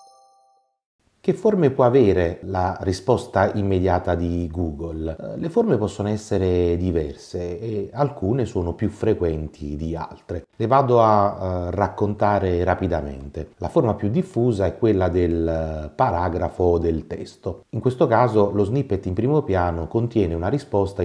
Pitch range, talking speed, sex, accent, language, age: 85-110 Hz, 130 wpm, male, native, Italian, 30-49